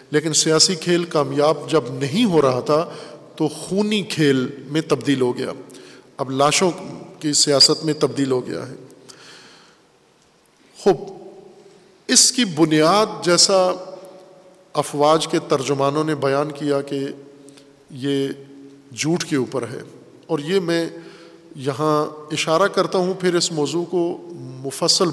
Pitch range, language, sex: 140-180 Hz, Urdu, male